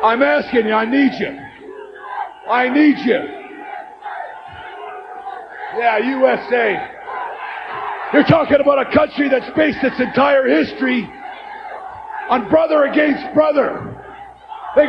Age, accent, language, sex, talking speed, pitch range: 50-69, American, English, male, 105 wpm, 275-385 Hz